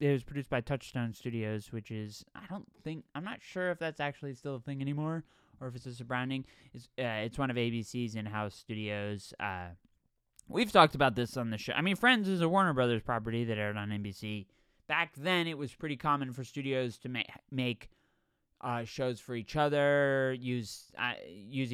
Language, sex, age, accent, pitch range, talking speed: English, male, 20-39, American, 110-155 Hz, 205 wpm